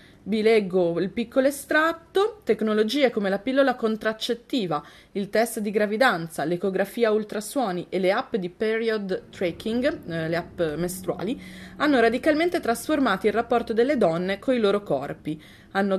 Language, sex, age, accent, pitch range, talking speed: Italian, female, 20-39, native, 190-240 Hz, 135 wpm